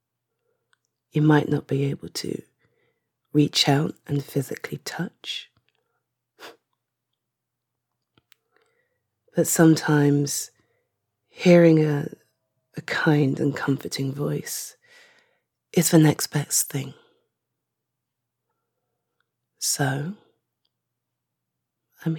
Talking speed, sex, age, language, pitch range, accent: 75 wpm, female, 30-49, English, 140-165 Hz, British